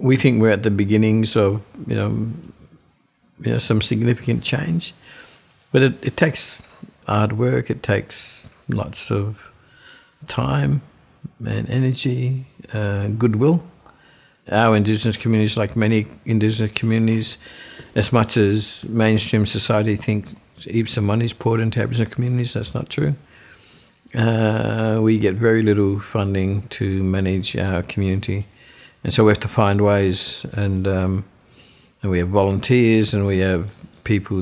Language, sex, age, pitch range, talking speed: English, male, 60-79, 100-115 Hz, 145 wpm